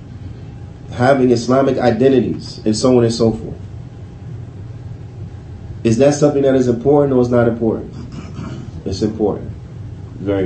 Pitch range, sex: 105-125 Hz, male